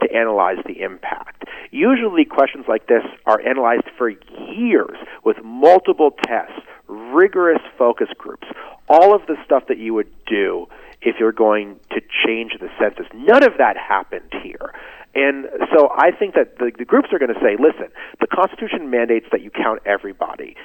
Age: 40-59